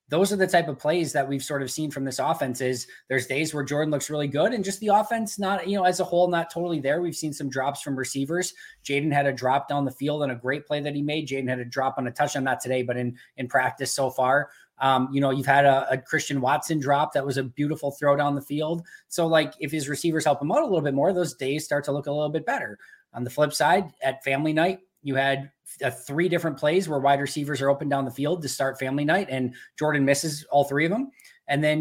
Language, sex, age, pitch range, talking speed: English, male, 20-39, 135-155 Hz, 270 wpm